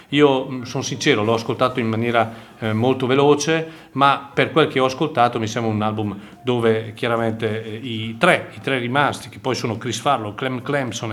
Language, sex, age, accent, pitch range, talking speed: Italian, male, 40-59, native, 115-145 Hz, 185 wpm